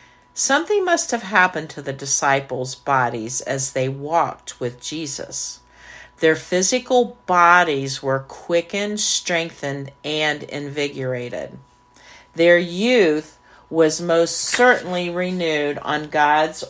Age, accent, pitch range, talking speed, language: 50-69, American, 140-180 Hz, 105 wpm, English